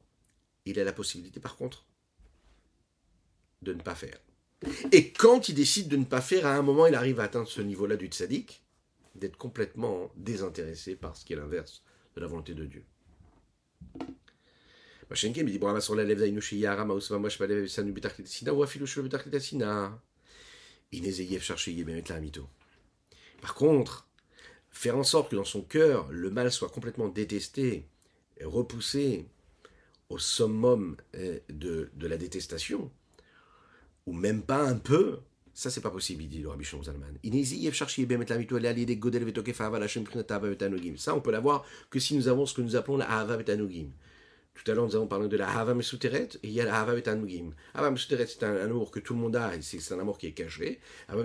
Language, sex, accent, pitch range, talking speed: French, male, French, 95-135 Hz, 145 wpm